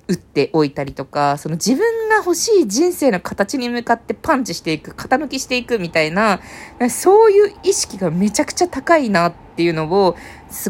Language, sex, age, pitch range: Japanese, female, 20-39, 155-230 Hz